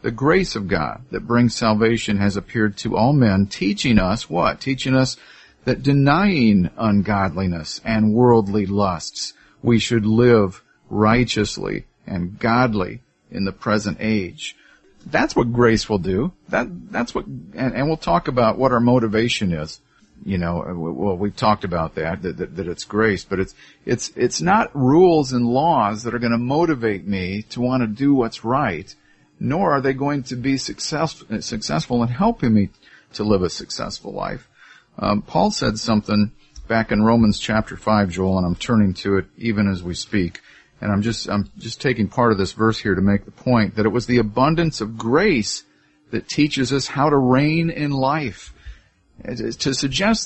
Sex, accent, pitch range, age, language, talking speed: male, American, 100-130 Hz, 50-69, English, 180 wpm